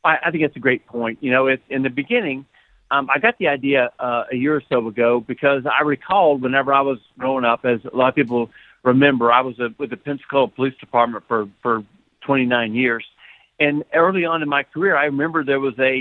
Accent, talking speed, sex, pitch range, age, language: American, 215 wpm, male, 125-145 Hz, 50-69, English